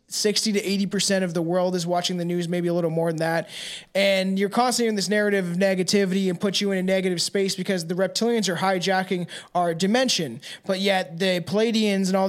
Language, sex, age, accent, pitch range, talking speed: English, male, 20-39, American, 180-210 Hz, 220 wpm